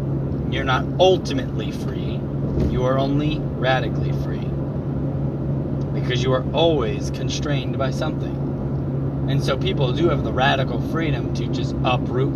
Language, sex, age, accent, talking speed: English, male, 30-49, American, 130 wpm